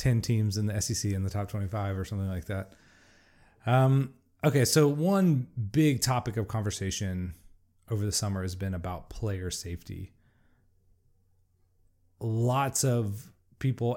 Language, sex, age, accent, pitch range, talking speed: English, male, 30-49, American, 95-120 Hz, 140 wpm